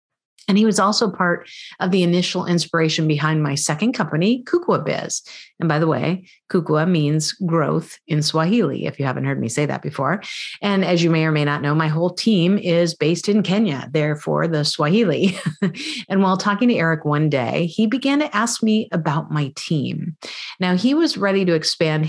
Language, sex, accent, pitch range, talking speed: English, female, American, 155-210 Hz, 195 wpm